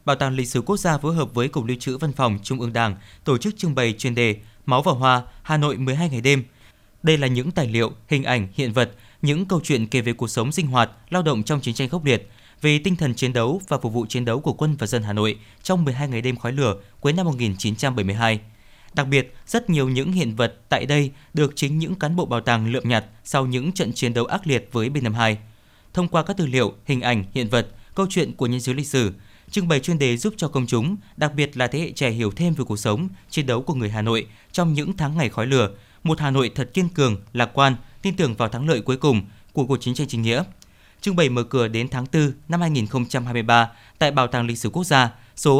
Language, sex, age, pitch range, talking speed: Vietnamese, male, 20-39, 115-150 Hz, 255 wpm